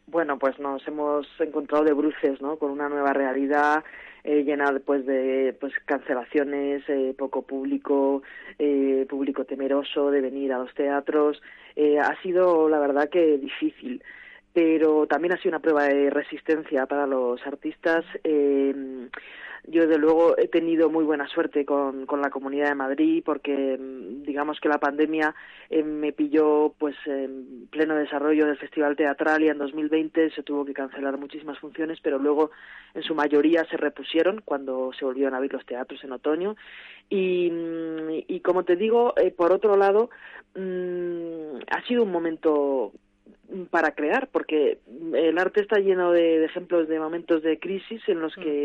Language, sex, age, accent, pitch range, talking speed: Spanish, female, 20-39, Spanish, 140-160 Hz, 165 wpm